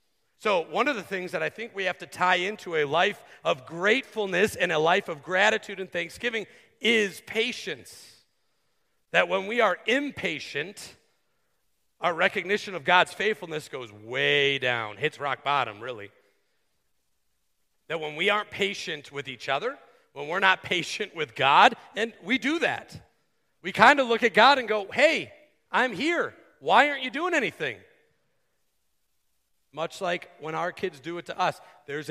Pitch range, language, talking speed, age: 150-205 Hz, English, 165 wpm, 40-59